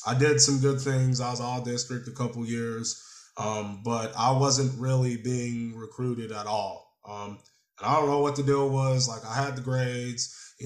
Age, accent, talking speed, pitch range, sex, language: 20-39, American, 205 wpm, 115-130 Hz, male, English